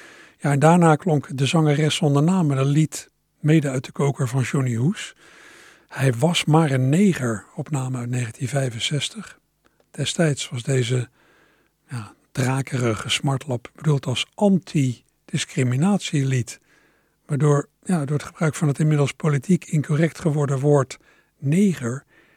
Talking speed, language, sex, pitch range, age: 125 wpm, Dutch, male, 125-155 Hz, 60-79